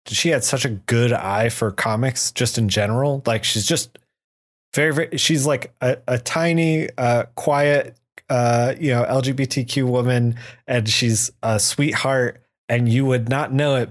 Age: 20-39